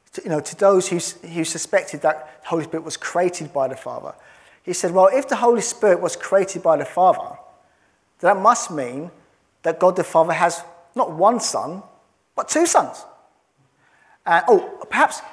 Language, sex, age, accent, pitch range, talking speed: English, male, 30-49, British, 160-220 Hz, 175 wpm